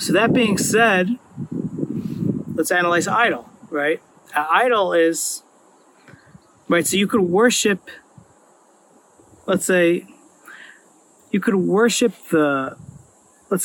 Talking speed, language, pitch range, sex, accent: 95 wpm, English, 160-205 Hz, male, American